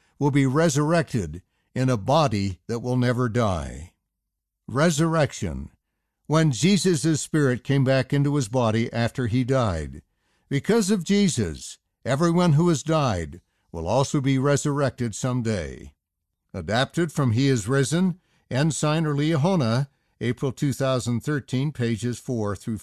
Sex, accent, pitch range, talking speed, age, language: male, American, 110-155 Hz, 125 wpm, 60-79, English